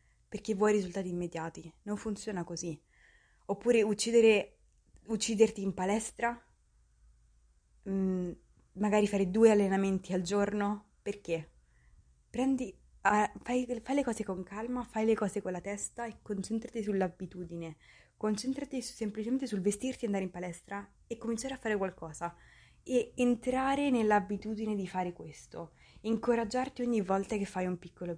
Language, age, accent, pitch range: Italian, 20-39, native, 175-225 Hz